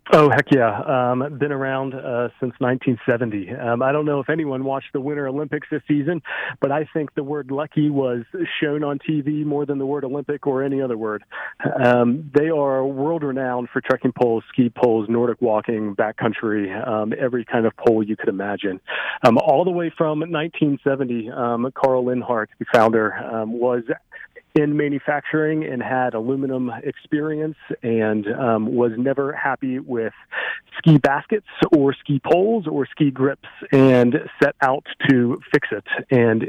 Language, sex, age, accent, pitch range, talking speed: English, male, 40-59, American, 120-145 Hz, 165 wpm